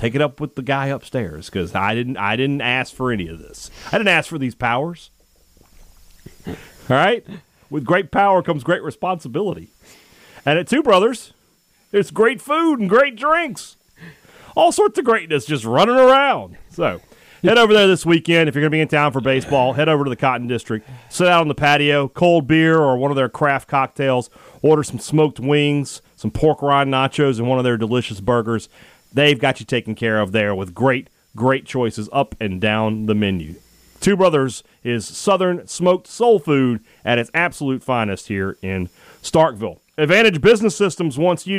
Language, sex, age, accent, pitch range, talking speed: English, male, 40-59, American, 120-170 Hz, 190 wpm